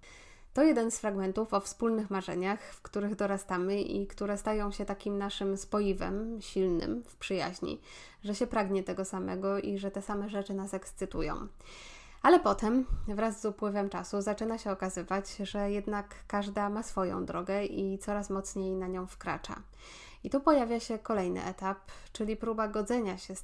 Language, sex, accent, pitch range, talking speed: Polish, female, native, 190-225 Hz, 165 wpm